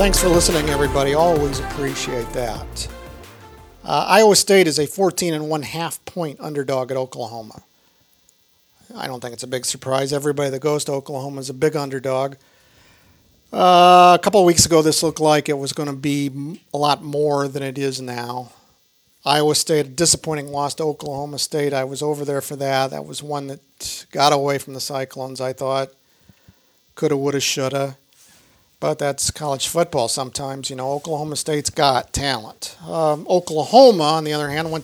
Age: 50-69